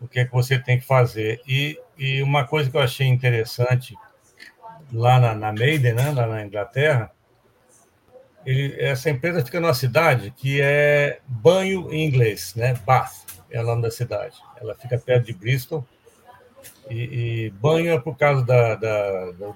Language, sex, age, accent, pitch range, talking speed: Portuguese, male, 60-79, Brazilian, 115-145 Hz, 170 wpm